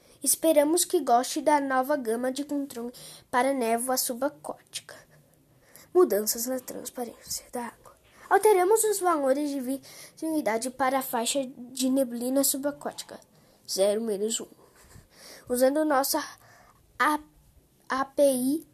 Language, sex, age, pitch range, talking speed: Portuguese, female, 10-29, 255-310 Hz, 100 wpm